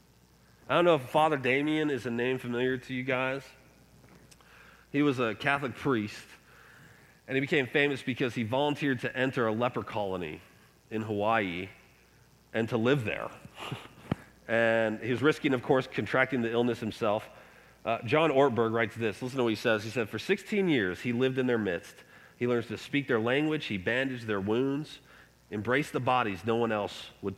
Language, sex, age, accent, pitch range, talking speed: English, male, 40-59, American, 110-140 Hz, 180 wpm